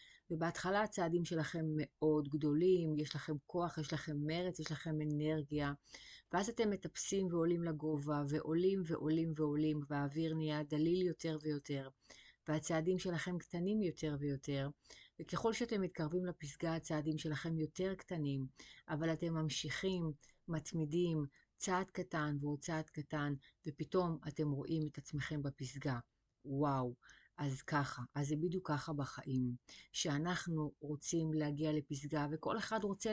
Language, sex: Hebrew, female